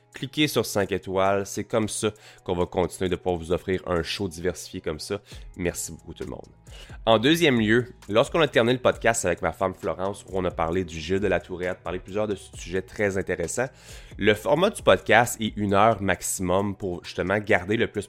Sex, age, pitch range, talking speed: male, 20-39, 95-115 Hz, 210 wpm